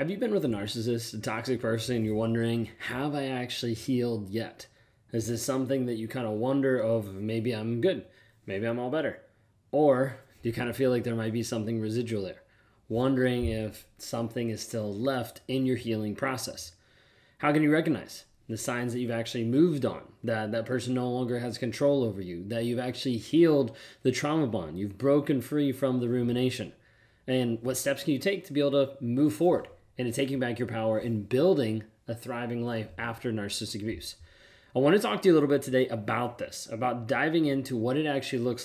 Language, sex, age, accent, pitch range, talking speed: English, male, 20-39, American, 115-135 Hz, 205 wpm